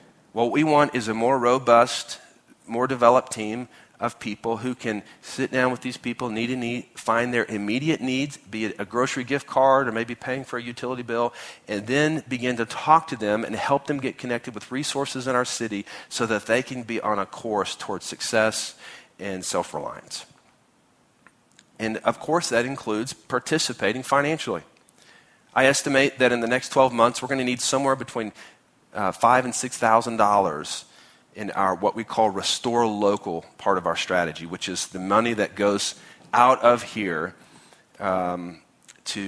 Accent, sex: American, male